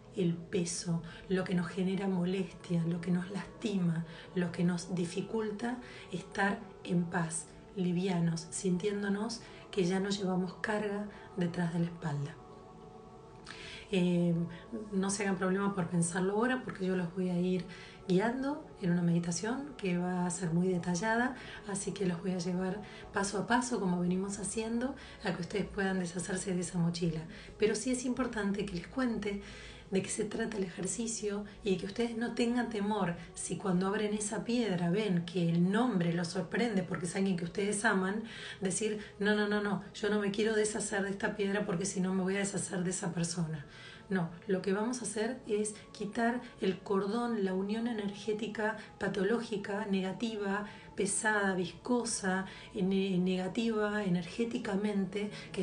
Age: 40-59